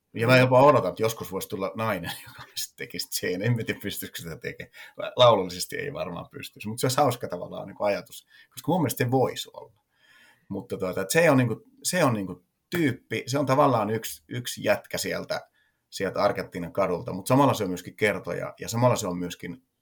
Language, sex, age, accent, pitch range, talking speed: Finnish, male, 30-49, native, 90-110 Hz, 195 wpm